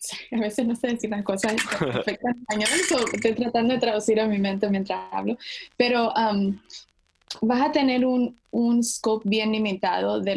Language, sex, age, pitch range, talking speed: Spanish, female, 10-29, 195-225 Hz, 180 wpm